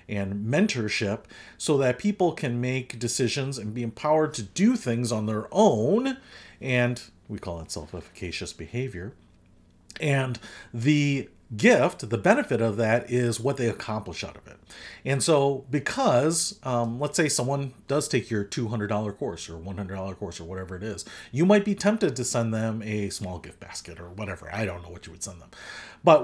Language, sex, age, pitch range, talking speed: English, male, 40-59, 100-130 Hz, 180 wpm